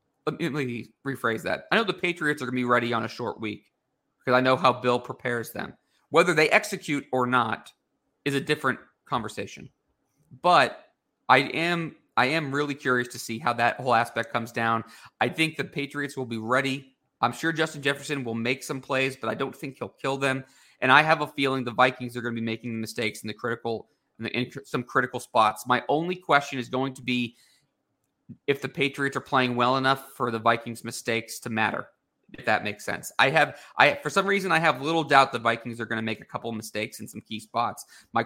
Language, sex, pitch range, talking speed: English, male, 120-145 Hz, 220 wpm